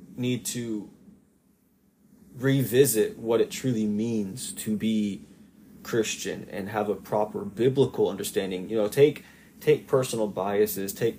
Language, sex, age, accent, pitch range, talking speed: English, male, 20-39, American, 105-130 Hz, 125 wpm